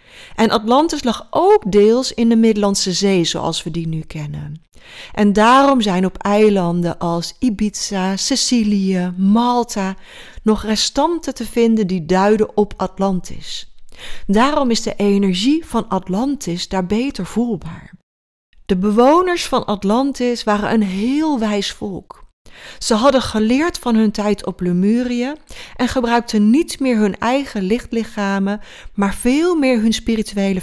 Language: Dutch